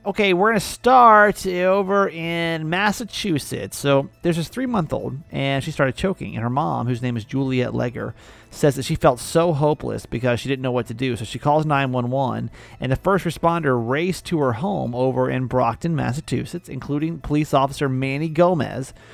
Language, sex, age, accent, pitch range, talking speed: English, male, 30-49, American, 125-165 Hz, 180 wpm